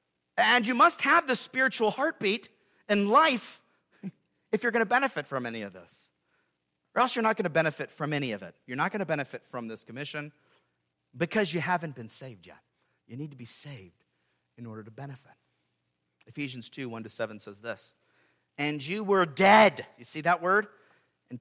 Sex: male